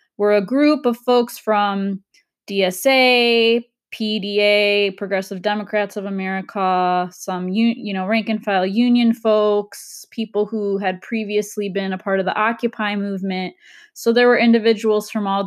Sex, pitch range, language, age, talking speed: female, 195-225 Hz, English, 20-39, 145 wpm